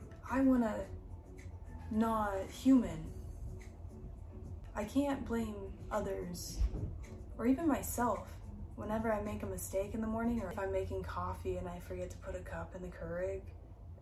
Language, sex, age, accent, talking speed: English, female, 10-29, American, 145 wpm